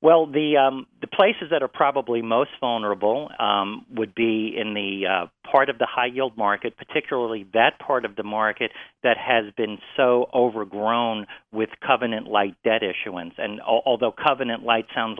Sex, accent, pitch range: male, American, 105-130 Hz